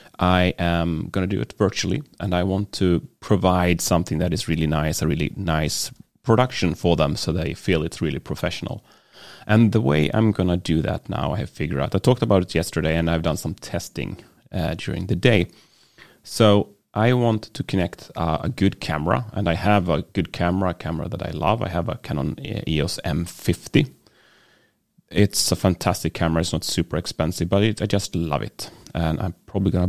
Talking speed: 200 wpm